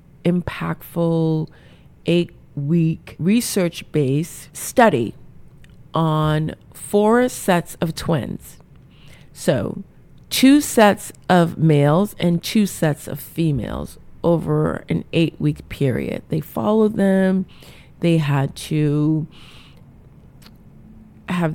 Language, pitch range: English, 145-180 Hz